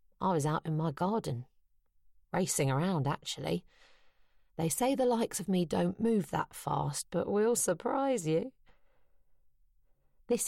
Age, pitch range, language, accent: 40-59, 145-210 Hz, English, British